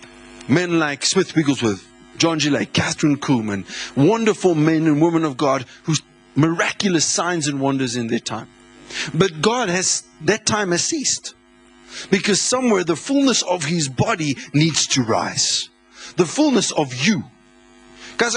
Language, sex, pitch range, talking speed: English, male, 125-175 Hz, 145 wpm